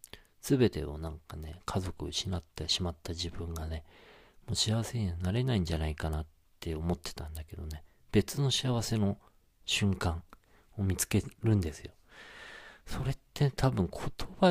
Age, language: 40-59, Japanese